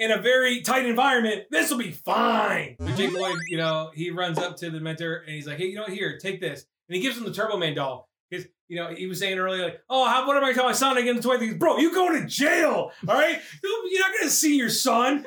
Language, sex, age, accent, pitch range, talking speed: English, male, 30-49, American, 195-300 Hz, 285 wpm